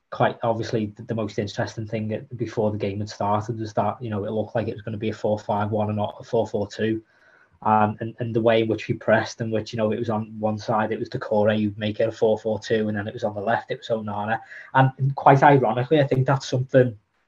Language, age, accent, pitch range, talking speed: English, 20-39, British, 110-130 Hz, 275 wpm